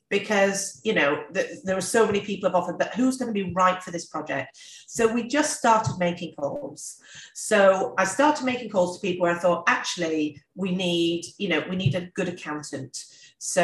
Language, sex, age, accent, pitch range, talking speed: English, female, 40-59, British, 165-220 Hz, 205 wpm